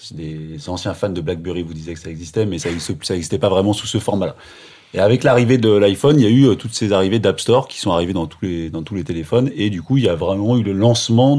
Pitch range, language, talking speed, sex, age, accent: 90-110 Hz, French, 270 wpm, male, 30-49, French